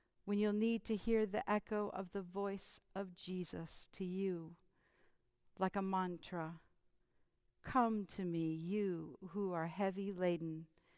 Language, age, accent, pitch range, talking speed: English, 50-69, American, 180-220 Hz, 135 wpm